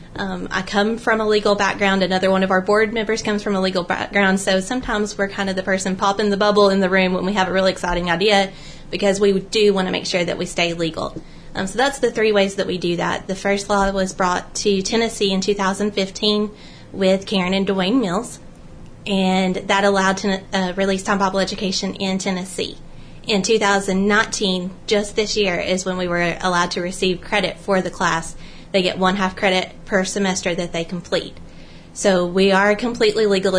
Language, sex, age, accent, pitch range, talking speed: English, female, 20-39, American, 185-210 Hz, 205 wpm